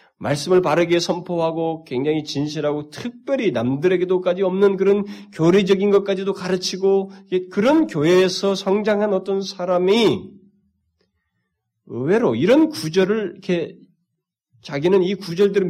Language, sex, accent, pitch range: Korean, male, native, 130-200 Hz